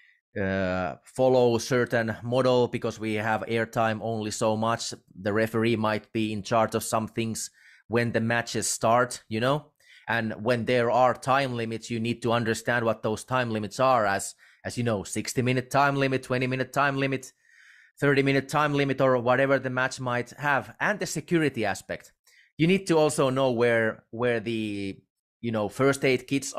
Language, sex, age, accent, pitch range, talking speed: English, male, 30-49, Finnish, 115-140 Hz, 185 wpm